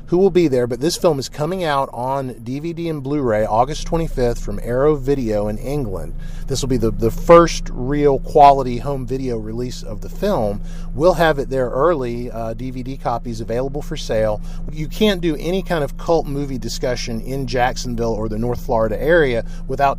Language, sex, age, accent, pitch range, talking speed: English, male, 40-59, American, 115-160 Hz, 190 wpm